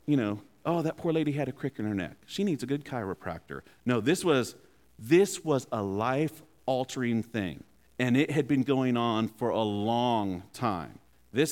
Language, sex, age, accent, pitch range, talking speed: English, male, 40-59, American, 100-165 Hz, 190 wpm